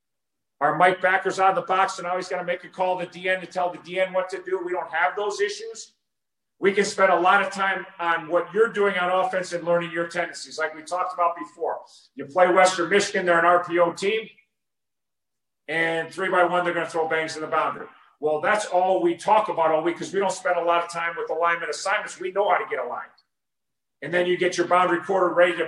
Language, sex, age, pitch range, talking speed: English, male, 40-59, 175-195 Hz, 250 wpm